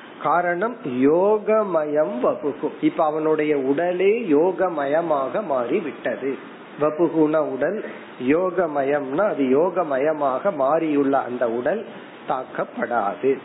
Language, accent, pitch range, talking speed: Tamil, native, 140-175 Hz, 80 wpm